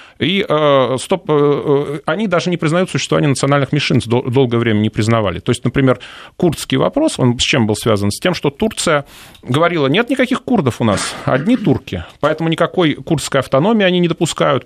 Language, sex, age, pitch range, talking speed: Russian, male, 30-49, 115-150 Hz, 170 wpm